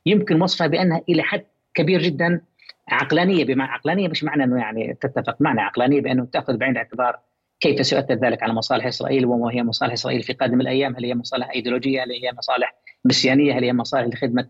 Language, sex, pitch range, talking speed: Arabic, female, 125-145 Hz, 190 wpm